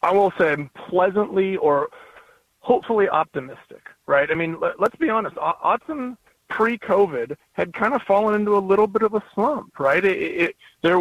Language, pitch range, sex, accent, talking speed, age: English, 155-215 Hz, male, American, 155 wpm, 40-59